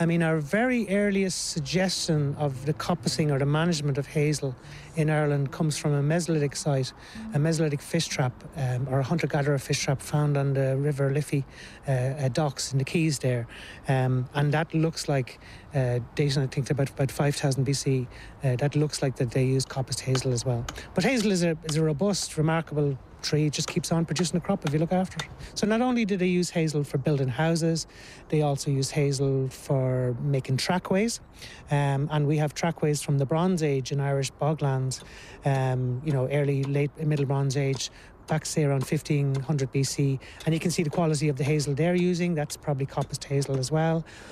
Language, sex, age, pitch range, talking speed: English, male, 30-49, 135-160 Hz, 200 wpm